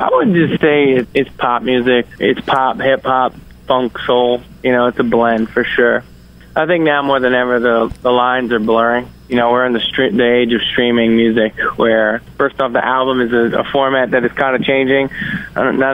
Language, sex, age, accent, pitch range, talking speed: English, male, 20-39, American, 115-130 Hz, 215 wpm